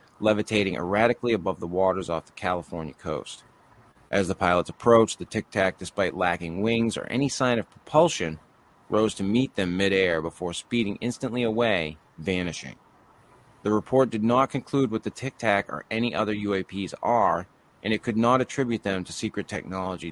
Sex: male